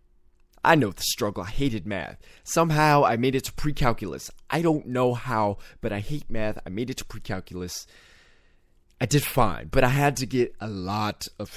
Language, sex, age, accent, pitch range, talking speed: English, male, 20-39, American, 85-135 Hz, 190 wpm